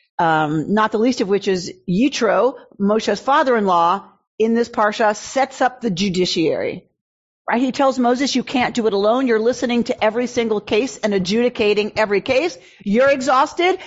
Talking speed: 165 wpm